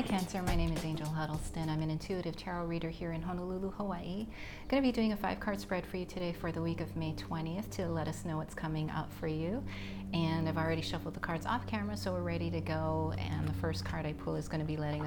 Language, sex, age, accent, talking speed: English, female, 30-49, American, 265 wpm